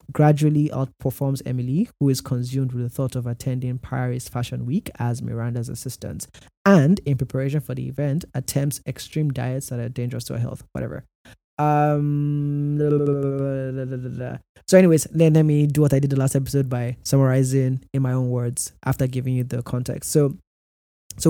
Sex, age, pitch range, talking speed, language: male, 20-39, 125-145 Hz, 190 wpm, English